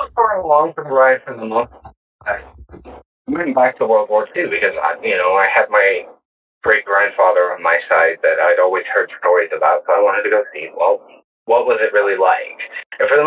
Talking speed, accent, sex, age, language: 215 wpm, American, male, 30-49, English